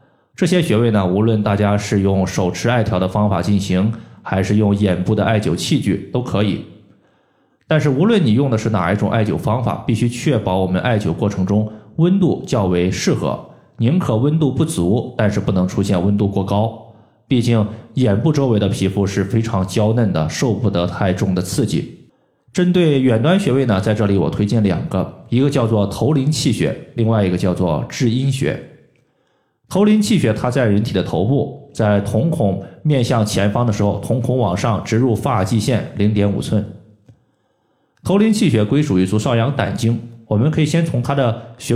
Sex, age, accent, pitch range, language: male, 20-39, native, 100-135 Hz, Chinese